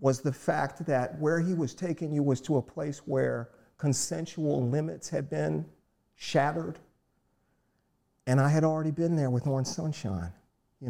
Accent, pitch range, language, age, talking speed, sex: American, 125-150 Hz, English, 50-69, 160 wpm, male